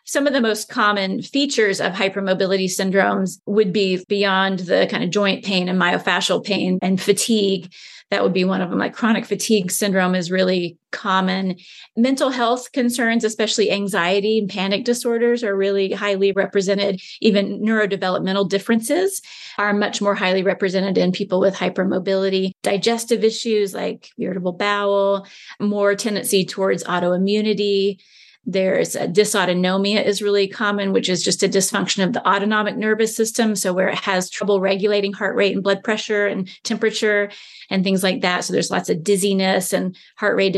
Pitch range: 190-220 Hz